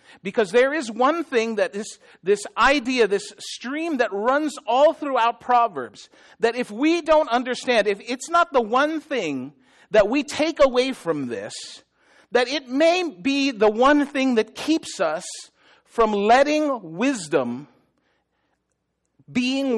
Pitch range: 205-275 Hz